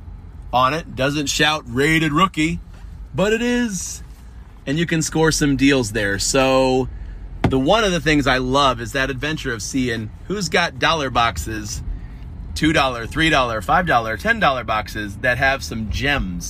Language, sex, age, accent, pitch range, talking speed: English, male, 30-49, American, 90-145 Hz, 155 wpm